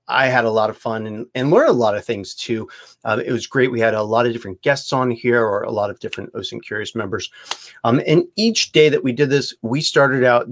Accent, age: American, 30-49